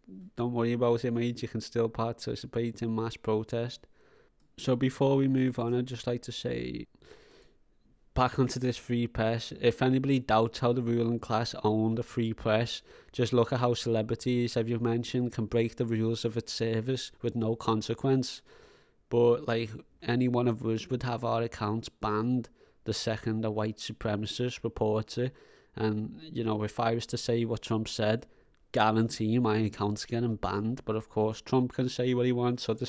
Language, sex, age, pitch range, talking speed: English, male, 20-39, 110-125 Hz, 185 wpm